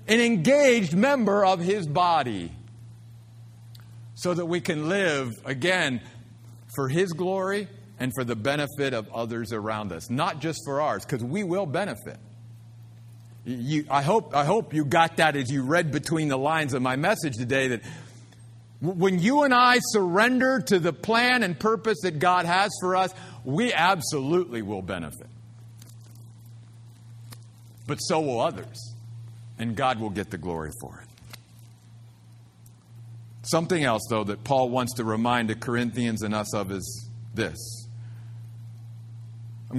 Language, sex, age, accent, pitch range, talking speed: English, male, 50-69, American, 115-170 Hz, 145 wpm